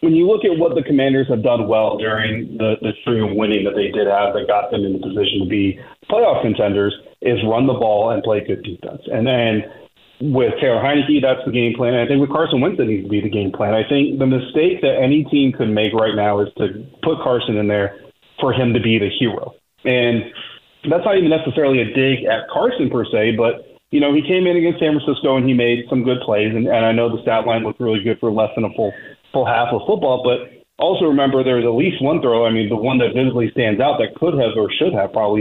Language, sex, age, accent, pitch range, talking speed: English, male, 30-49, American, 110-130 Hz, 255 wpm